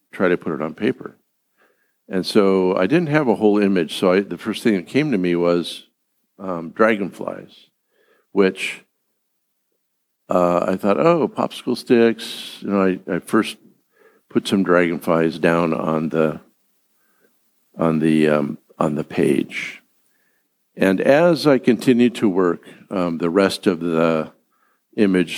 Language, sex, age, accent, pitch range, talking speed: English, male, 60-79, American, 85-110 Hz, 145 wpm